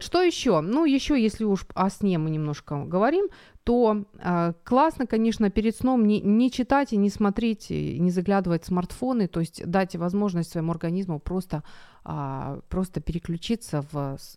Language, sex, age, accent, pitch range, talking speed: Ukrainian, female, 30-49, native, 165-225 Hz, 160 wpm